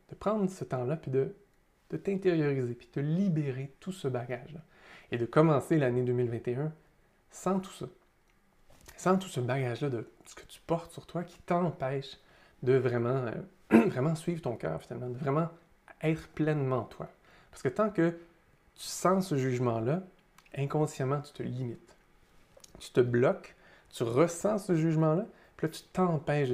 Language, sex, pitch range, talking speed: French, male, 130-175 Hz, 160 wpm